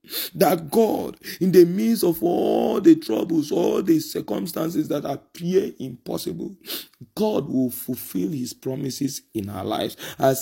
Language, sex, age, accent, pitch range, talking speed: English, male, 40-59, Nigerian, 125-175 Hz, 140 wpm